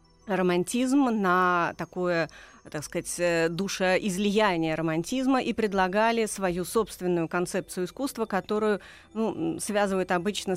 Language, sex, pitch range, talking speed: Russian, female, 170-210 Hz, 100 wpm